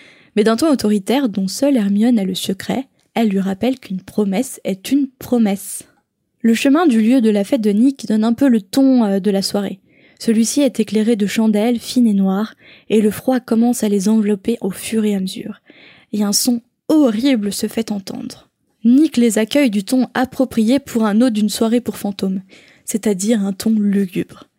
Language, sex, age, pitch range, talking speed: French, female, 10-29, 205-245 Hz, 195 wpm